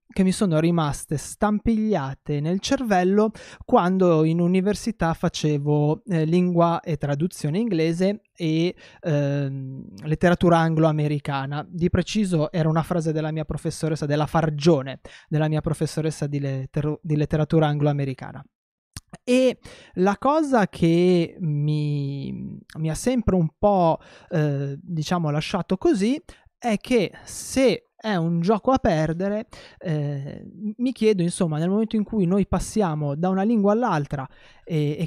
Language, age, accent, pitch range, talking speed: Italian, 20-39, native, 150-195 Hz, 130 wpm